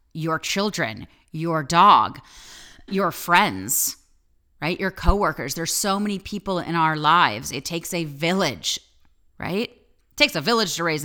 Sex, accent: female, American